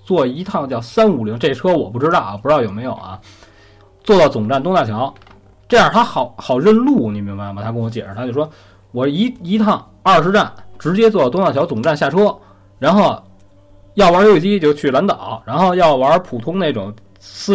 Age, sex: 20-39, male